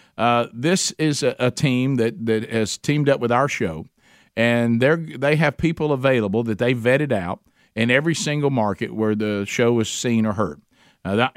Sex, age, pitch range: male, 50-69, 115-135 Hz